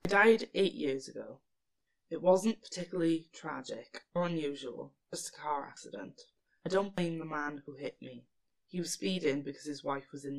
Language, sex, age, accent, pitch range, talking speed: English, female, 10-29, British, 130-160 Hz, 180 wpm